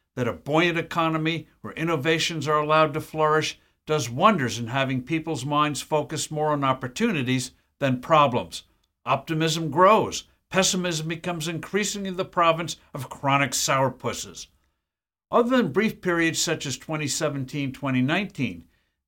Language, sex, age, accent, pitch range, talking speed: English, male, 60-79, American, 135-170 Hz, 125 wpm